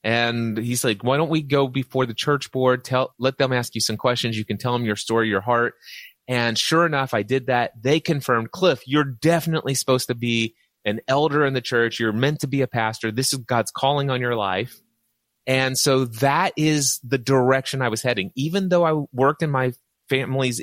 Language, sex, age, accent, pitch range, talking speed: English, male, 30-49, American, 110-140 Hz, 215 wpm